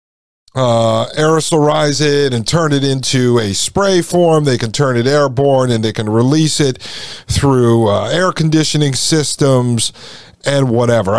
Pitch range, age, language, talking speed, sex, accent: 120-155 Hz, 50-69, English, 145 wpm, male, American